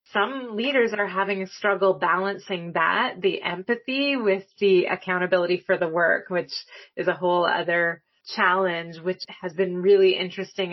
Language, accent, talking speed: English, American, 150 wpm